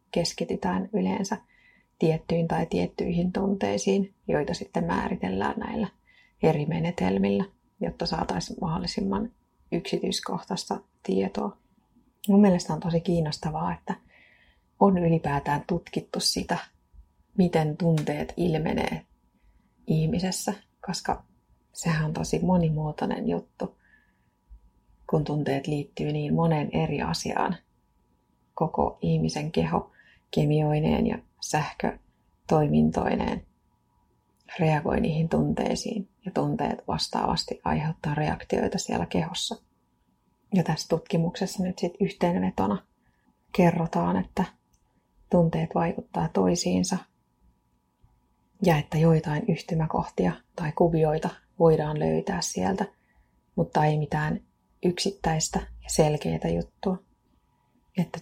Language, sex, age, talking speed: Finnish, female, 30-49, 90 wpm